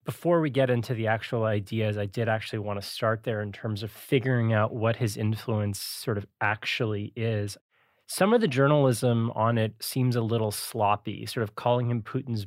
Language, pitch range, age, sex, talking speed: English, 105-120 Hz, 20-39, male, 195 wpm